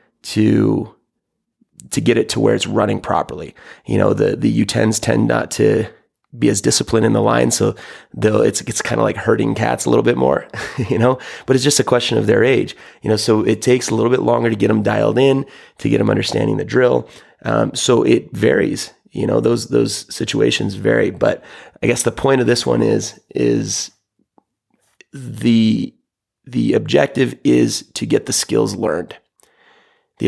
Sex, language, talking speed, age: male, English, 190 wpm, 30-49